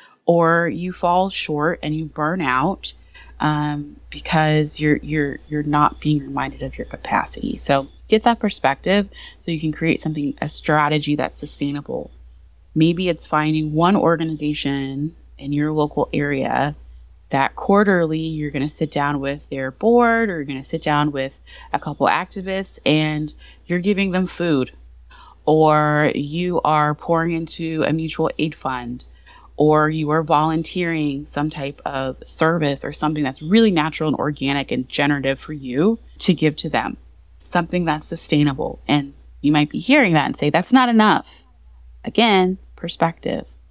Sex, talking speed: female, 155 wpm